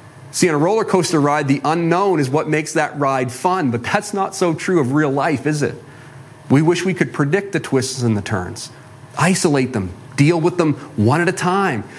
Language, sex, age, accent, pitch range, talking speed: English, male, 40-59, American, 135-190 Hz, 215 wpm